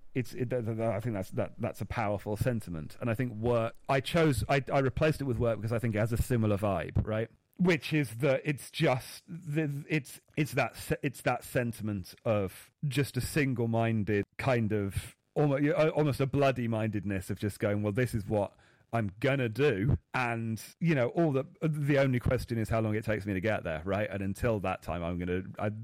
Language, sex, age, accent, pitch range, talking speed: English, male, 40-59, British, 110-135 Hz, 220 wpm